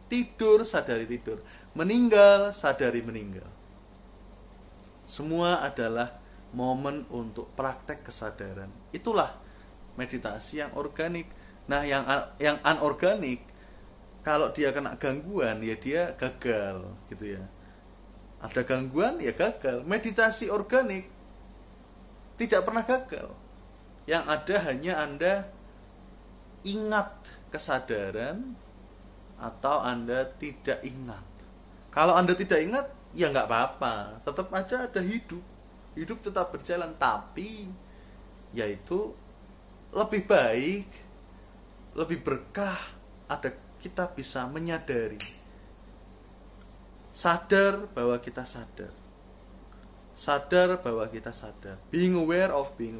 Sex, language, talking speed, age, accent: male, Indonesian, 95 wpm, 20-39, native